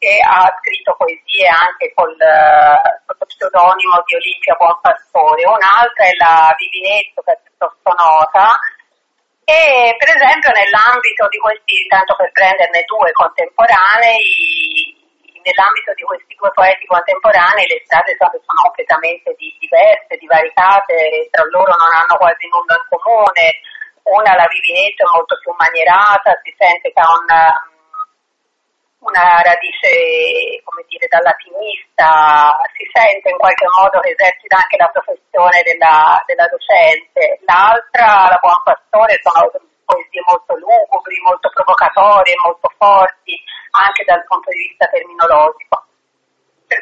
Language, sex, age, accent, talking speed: Italian, female, 40-59, native, 130 wpm